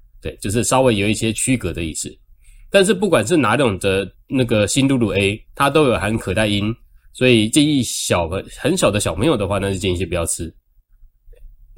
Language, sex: Chinese, male